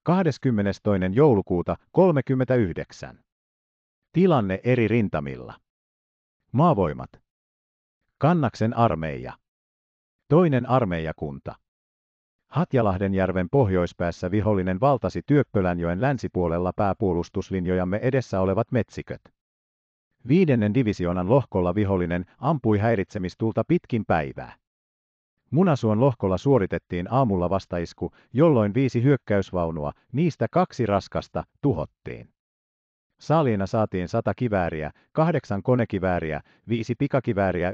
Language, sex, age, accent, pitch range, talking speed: Finnish, male, 50-69, native, 85-130 Hz, 80 wpm